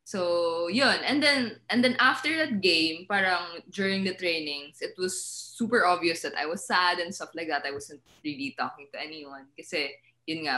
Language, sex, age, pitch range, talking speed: English, female, 20-39, 155-225 Hz, 195 wpm